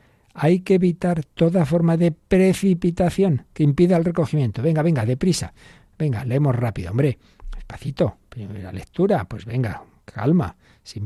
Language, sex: Spanish, male